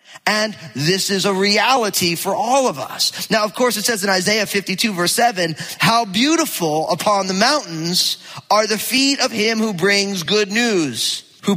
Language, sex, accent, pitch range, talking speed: English, male, American, 170-230 Hz, 175 wpm